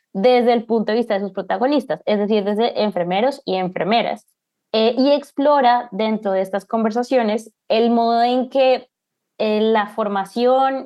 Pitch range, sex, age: 195-245 Hz, female, 20-39